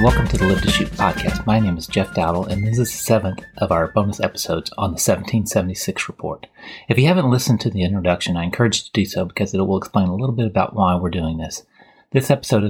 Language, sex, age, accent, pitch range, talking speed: English, male, 30-49, American, 95-120 Hz, 245 wpm